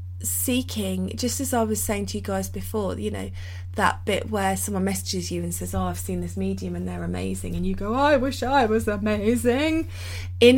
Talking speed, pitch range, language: 210 wpm, 90-100 Hz, English